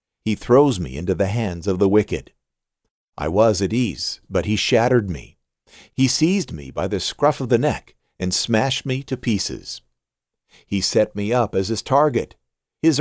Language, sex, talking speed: English, male, 180 wpm